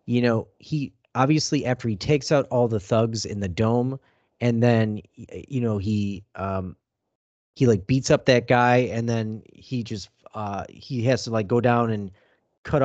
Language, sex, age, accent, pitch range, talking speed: English, male, 30-49, American, 105-135 Hz, 180 wpm